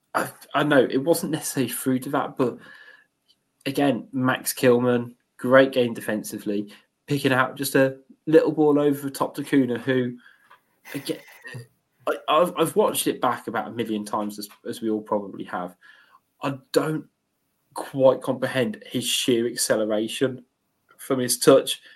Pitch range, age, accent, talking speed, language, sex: 115-135 Hz, 20-39, British, 140 wpm, English, male